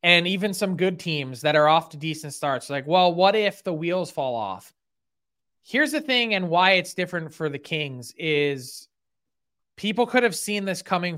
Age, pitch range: 20-39, 150-190 Hz